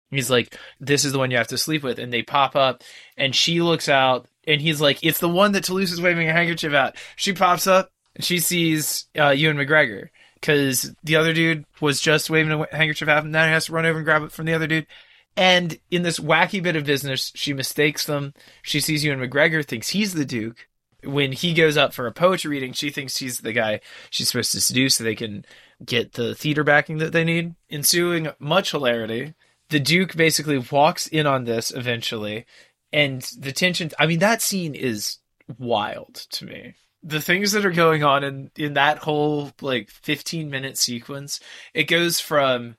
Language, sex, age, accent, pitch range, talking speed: English, male, 20-39, American, 130-160 Hz, 210 wpm